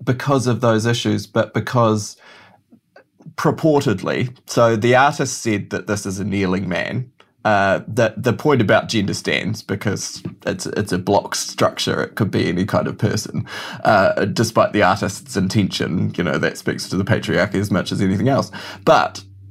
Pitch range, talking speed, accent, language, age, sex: 95-120 Hz, 170 wpm, Australian, English, 20-39, male